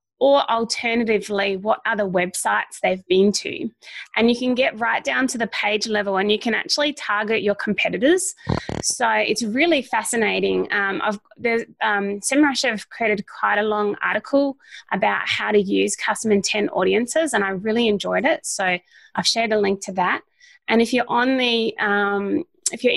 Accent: Australian